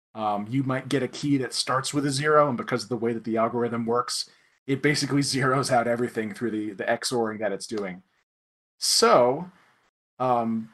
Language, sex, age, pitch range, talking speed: English, male, 30-49, 115-140 Hz, 190 wpm